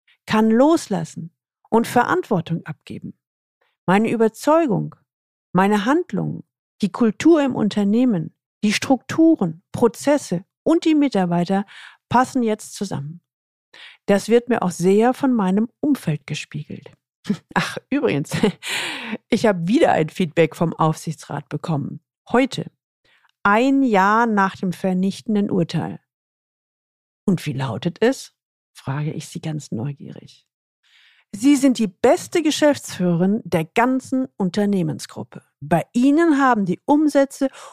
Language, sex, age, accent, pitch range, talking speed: German, female, 50-69, German, 160-245 Hz, 110 wpm